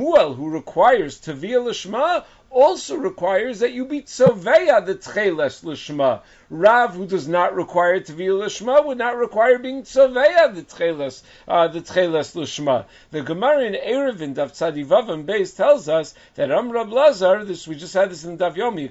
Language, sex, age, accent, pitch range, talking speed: English, male, 50-69, American, 175-260 Hz, 165 wpm